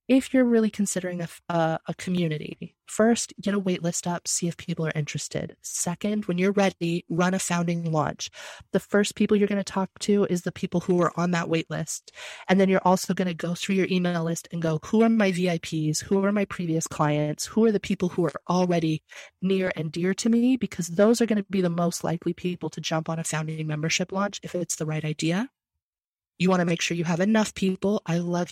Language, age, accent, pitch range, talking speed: English, 30-49, American, 165-190 Hz, 225 wpm